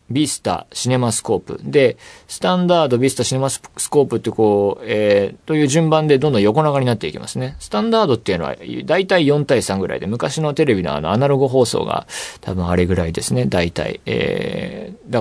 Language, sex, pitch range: Japanese, male, 105-160 Hz